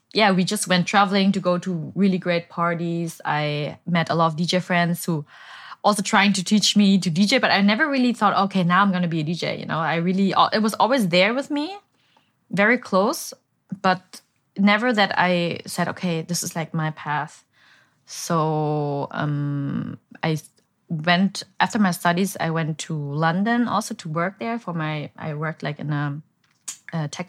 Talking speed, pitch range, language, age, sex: 190 wpm, 155-195 Hz, English, 20-39, female